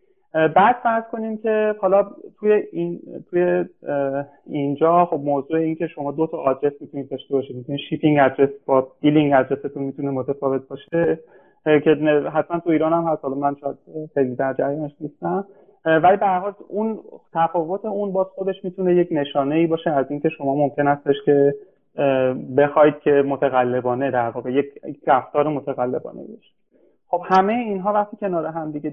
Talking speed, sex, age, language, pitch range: 160 wpm, male, 30-49, Persian, 140-175 Hz